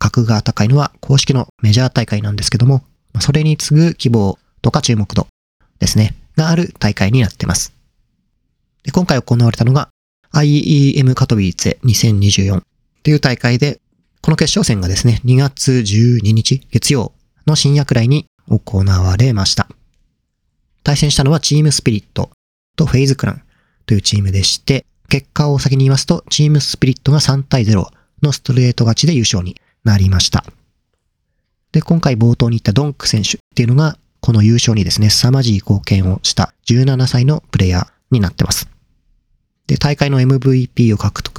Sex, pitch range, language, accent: male, 105-145 Hz, Japanese, native